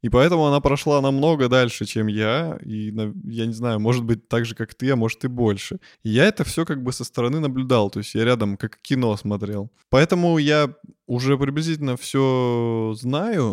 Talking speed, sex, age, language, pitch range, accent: 195 wpm, male, 20-39, Russian, 120-155 Hz, native